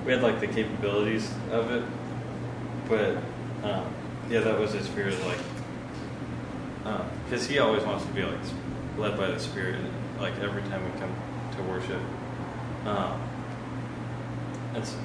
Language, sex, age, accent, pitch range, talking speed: English, male, 20-39, American, 95-115 Hz, 150 wpm